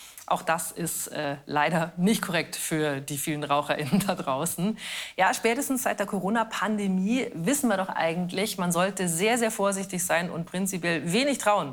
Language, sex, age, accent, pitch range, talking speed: German, female, 40-59, German, 150-210 Hz, 165 wpm